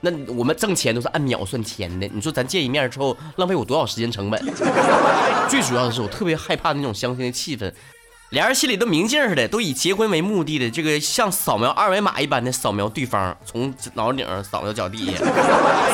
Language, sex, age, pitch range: Chinese, male, 20-39, 110-160 Hz